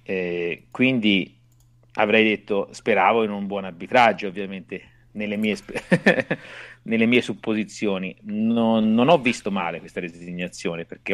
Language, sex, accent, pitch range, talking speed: Italian, male, native, 90-120 Hz, 130 wpm